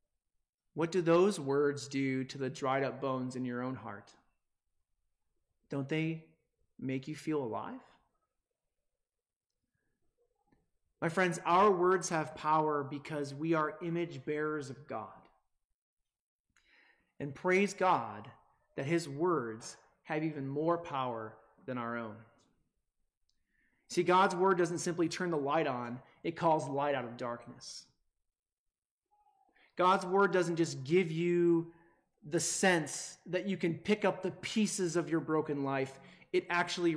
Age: 30-49